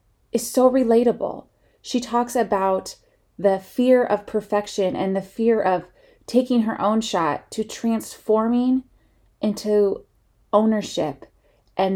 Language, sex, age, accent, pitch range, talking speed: English, female, 30-49, American, 170-220 Hz, 115 wpm